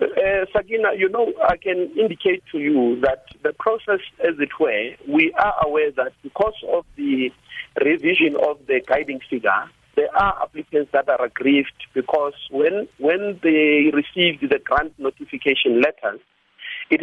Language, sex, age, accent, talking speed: English, male, 50-69, South African, 150 wpm